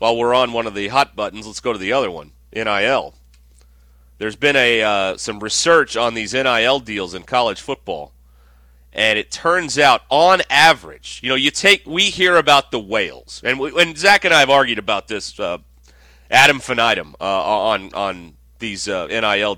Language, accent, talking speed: English, American, 185 wpm